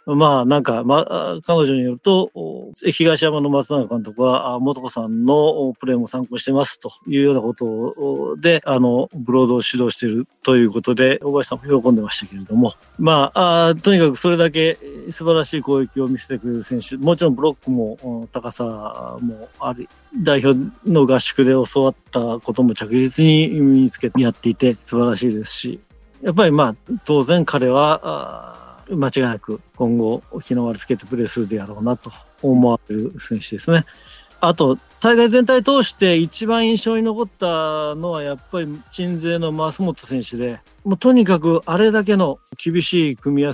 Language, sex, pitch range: Japanese, male, 120-165 Hz